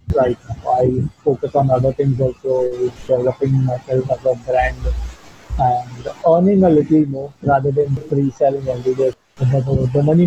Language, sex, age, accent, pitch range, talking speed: English, male, 20-39, Indian, 130-155 Hz, 145 wpm